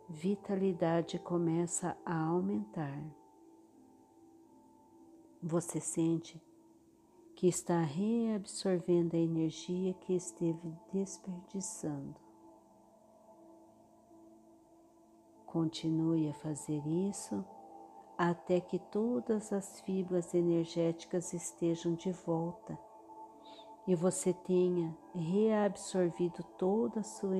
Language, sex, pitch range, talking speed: Portuguese, female, 155-195 Hz, 75 wpm